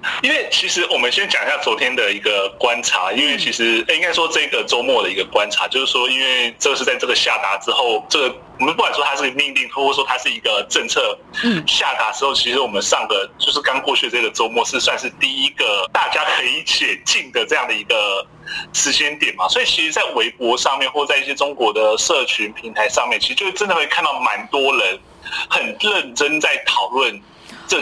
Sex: male